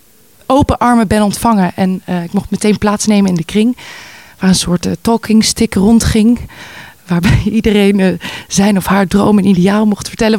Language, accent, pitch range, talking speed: Dutch, Dutch, 185-215 Hz, 180 wpm